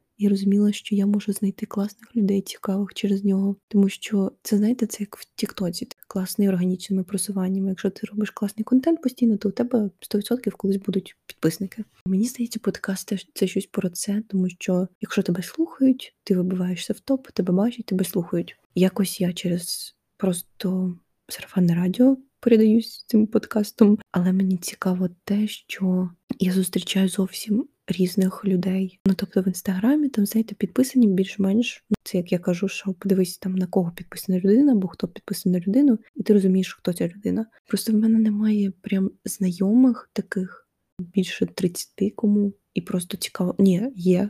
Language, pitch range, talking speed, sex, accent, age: Ukrainian, 185-215 Hz, 165 wpm, female, native, 20-39